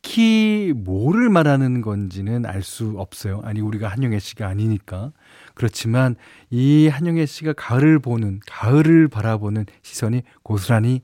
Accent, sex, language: native, male, Korean